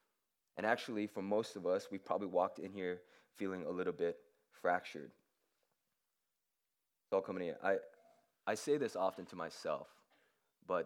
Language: English